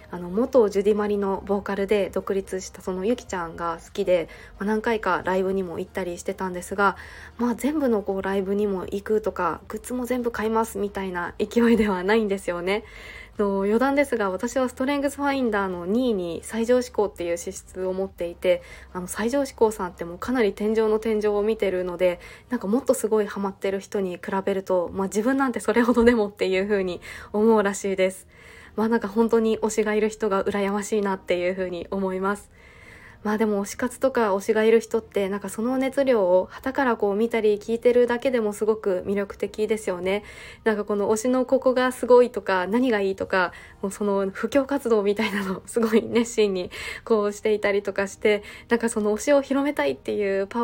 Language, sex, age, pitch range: Japanese, female, 20-39, 195-230 Hz